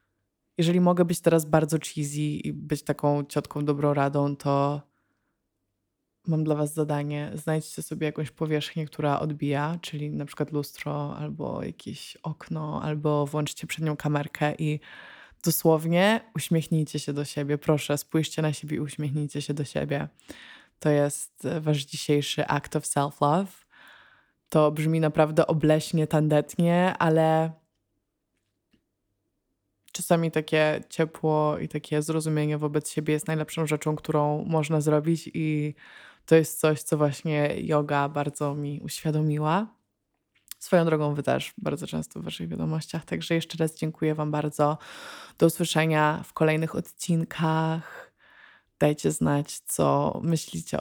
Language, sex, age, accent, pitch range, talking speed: Polish, female, 20-39, native, 145-160 Hz, 130 wpm